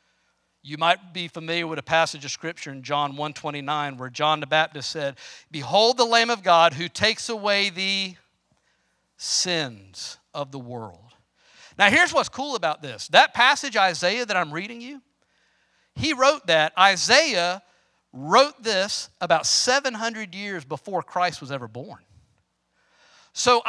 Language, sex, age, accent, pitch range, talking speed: English, male, 50-69, American, 165-260 Hz, 150 wpm